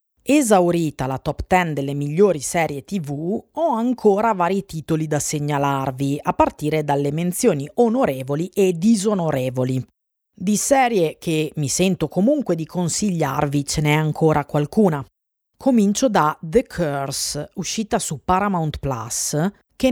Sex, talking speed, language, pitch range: female, 125 wpm, Italian, 140-205 Hz